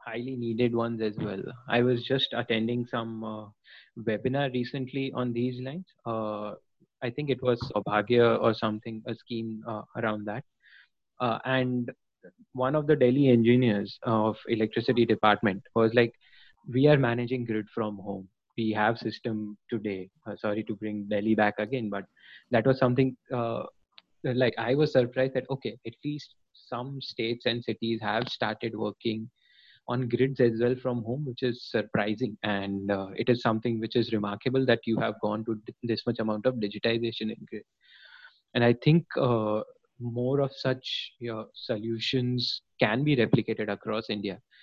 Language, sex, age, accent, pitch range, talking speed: English, male, 20-39, Indian, 110-125 Hz, 160 wpm